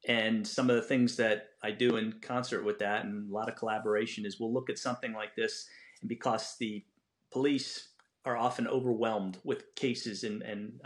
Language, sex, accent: English, male, American